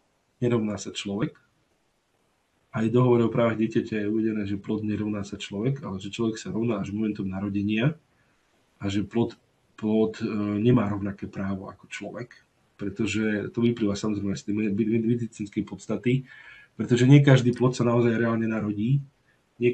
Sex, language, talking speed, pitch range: male, Slovak, 150 wpm, 105-125 Hz